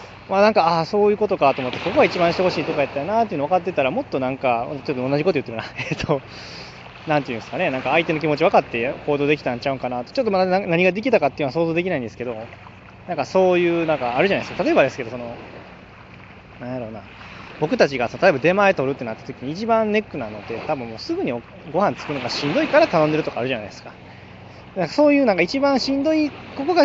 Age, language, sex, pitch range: 20-39, Japanese, male, 120-190 Hz